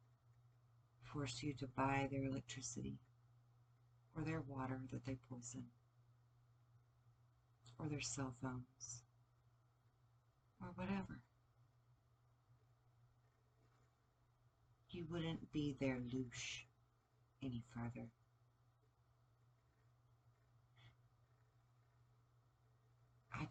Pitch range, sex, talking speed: 120-135 Hz, female, 65 wpm